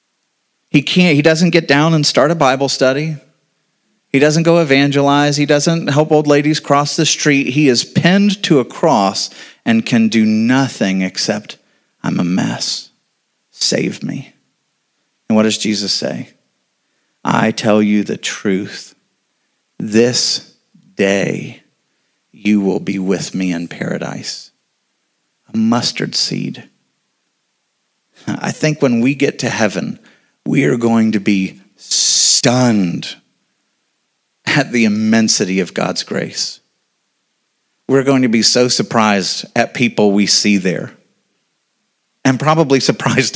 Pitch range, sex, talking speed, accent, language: 110-145 Hz, male, 130 wpm, American, English